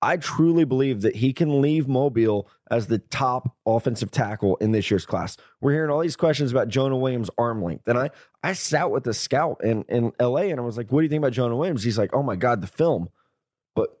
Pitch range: 115-145 Hz